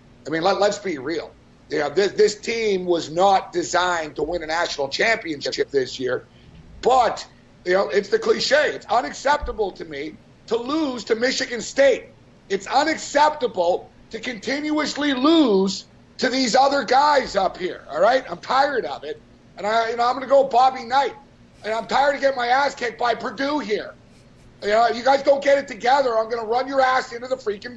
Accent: American